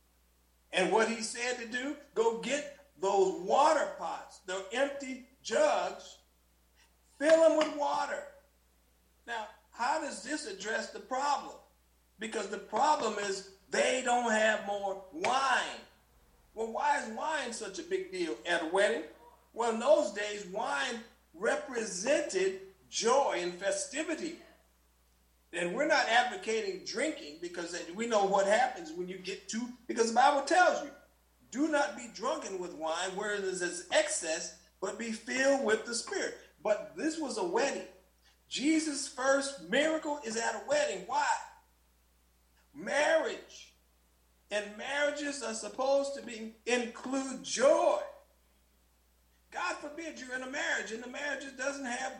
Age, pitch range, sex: 50-69, 185-285 Hz, male